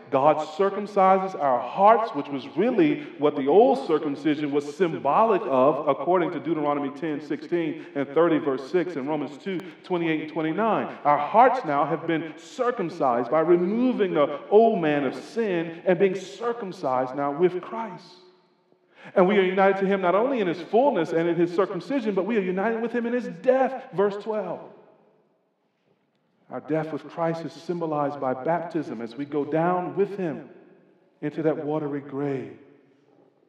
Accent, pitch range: American, 140-185 Hz